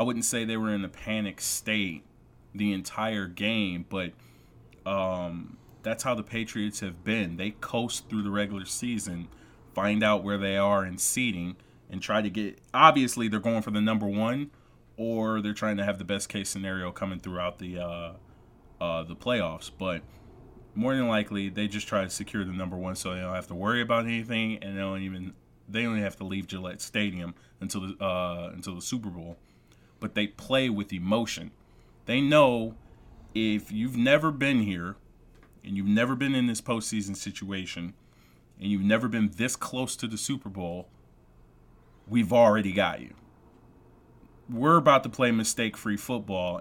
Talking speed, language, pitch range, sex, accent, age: 180 wpm, English, 90-115 Hz, male, American, 30-49